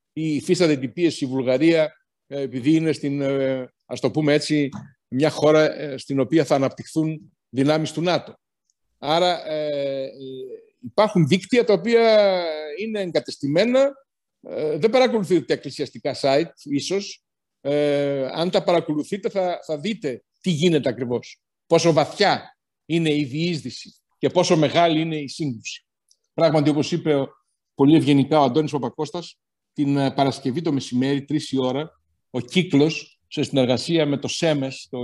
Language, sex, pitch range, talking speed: Greek, male, 130-160 Hz, 130 wpm